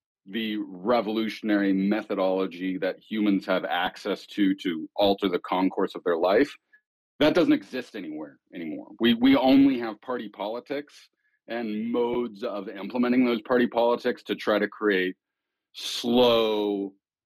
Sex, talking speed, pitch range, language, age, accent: male, 130 wpm, 100-125 Hz, English, 40-59, American